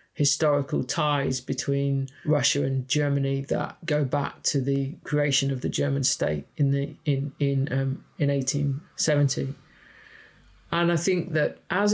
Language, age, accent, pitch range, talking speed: English, 40-59, British, 140-155 Hz, 140 wpm